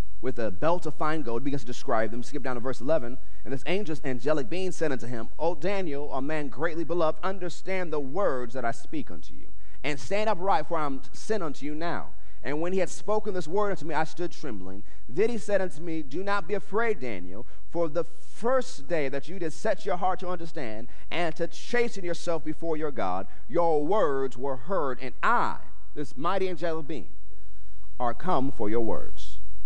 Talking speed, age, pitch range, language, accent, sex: 205 wpm, 30-49, 115-185 Hz, English, American, male